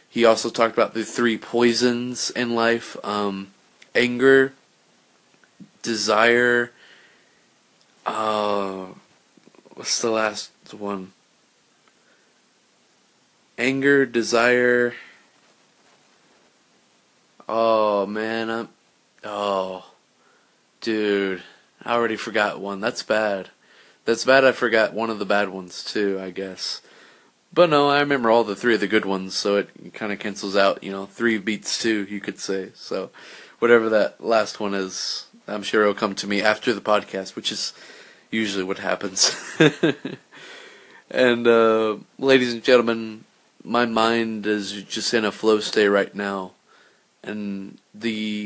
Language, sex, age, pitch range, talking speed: English, male, 20-39, 100-115 Hz, 130 wpm